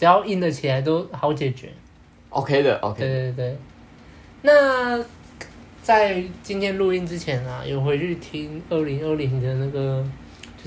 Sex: male